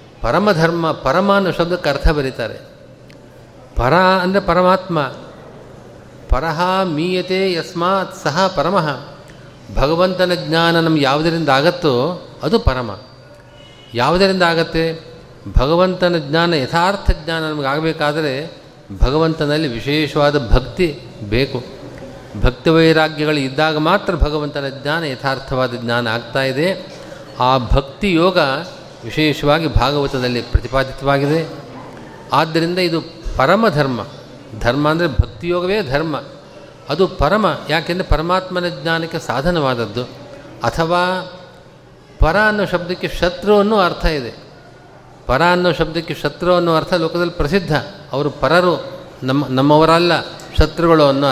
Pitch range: 140-175 Hz